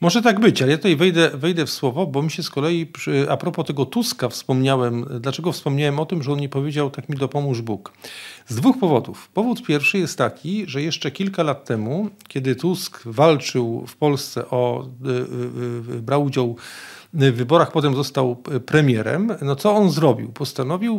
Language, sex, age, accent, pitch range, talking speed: Polish, male, 40-59, native, 130-180 Hz, 180 wpm